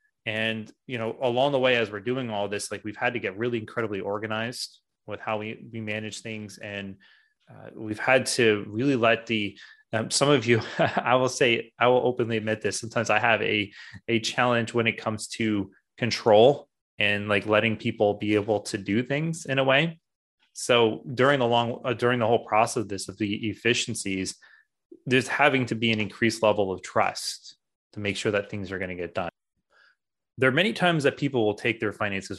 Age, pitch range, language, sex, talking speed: 20-39, 110-130 Hz, English, male, 205 wpm